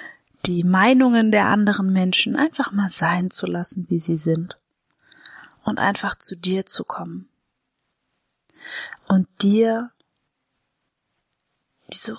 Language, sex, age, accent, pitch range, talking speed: German, female, 30-49, German, 185-225 Hz, 110 wpm